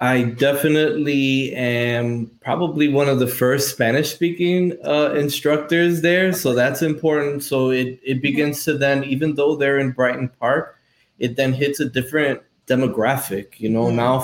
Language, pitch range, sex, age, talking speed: English, 125-145 Hz, male, 20-39, 150 wpm